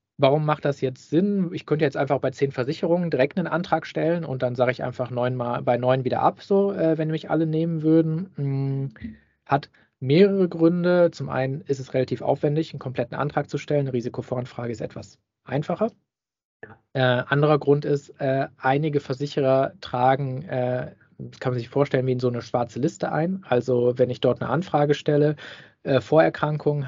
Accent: German